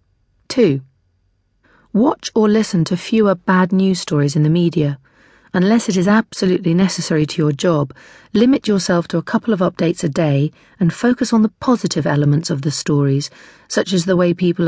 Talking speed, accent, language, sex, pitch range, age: 175 wpm, British, English, female, 155-195 Hz, 40-59